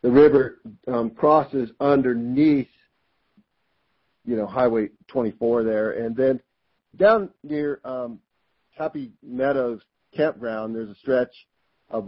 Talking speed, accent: 110 wpm, American